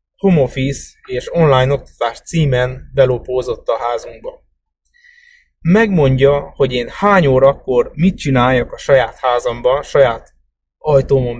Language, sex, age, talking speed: English, male, 30-49, 105 wpm